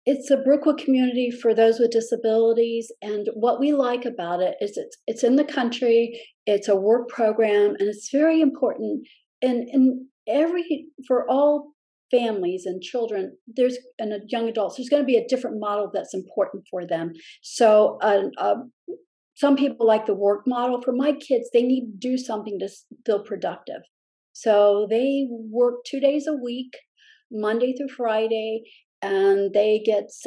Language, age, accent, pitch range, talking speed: English, 50-69, American, 215-260 Hz, 175 wpm